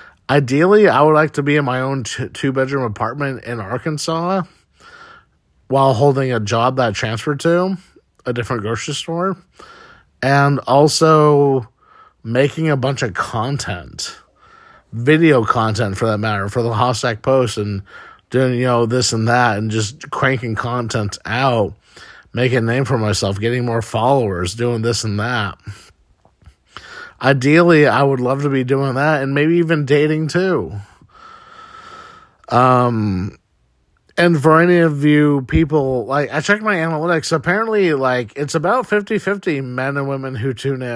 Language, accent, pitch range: English, American, 115-155 Hz